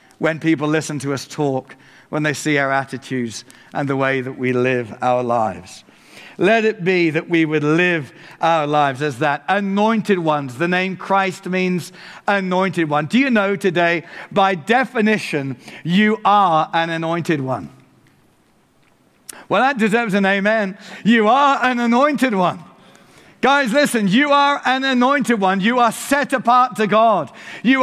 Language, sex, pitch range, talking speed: English, male, 165-230 Hz, 155 wpm